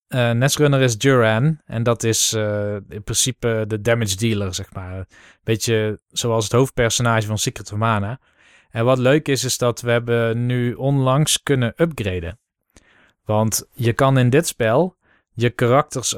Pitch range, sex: 110-140 Hz, male